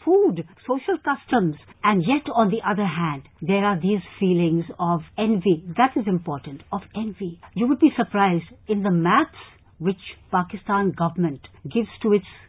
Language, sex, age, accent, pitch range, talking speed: English, female, 60-79, Indian, 180-230 Hz, 160 wpm